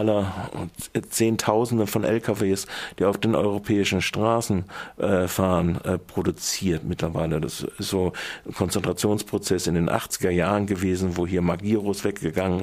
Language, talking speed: German, 120 wpm